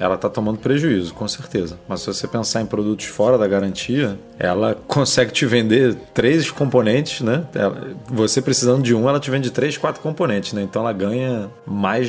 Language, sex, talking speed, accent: Portuguese, male, 190 wpm, Brazilian